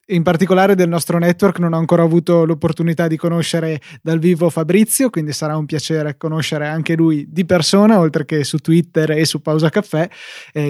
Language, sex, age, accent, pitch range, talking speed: Italian, male, 20-39, native, 160-180 Hz, 185 wpm